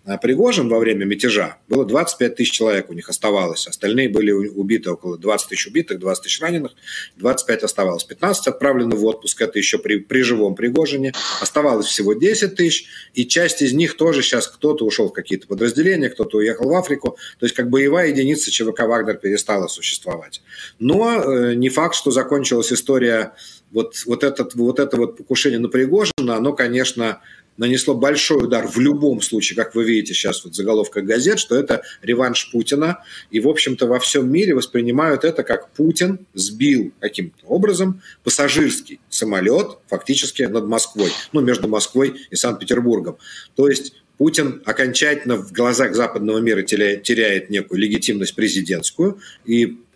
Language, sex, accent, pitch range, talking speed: Ukrainian, male, native, 115-145 Hz, 160 wpm